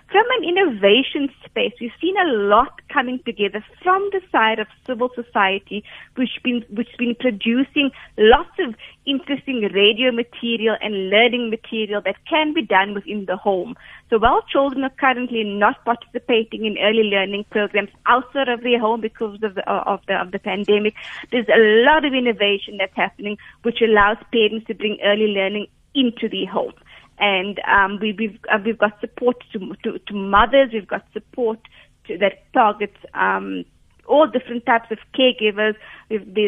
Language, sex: English, female